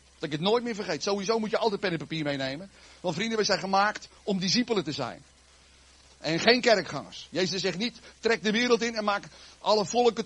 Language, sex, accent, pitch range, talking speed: Dutch, male, Dutch, 200-285 Hz, 215 wpm